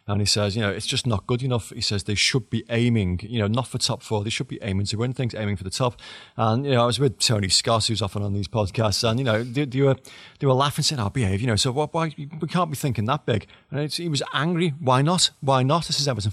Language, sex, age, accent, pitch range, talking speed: English, male, 30-49, British, 105-130 Hz, 290 wpm